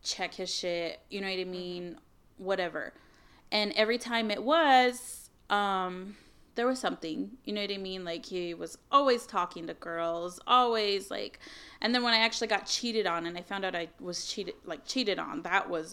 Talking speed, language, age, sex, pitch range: 195 wpm, English, 20-39, female, 175-230 Hz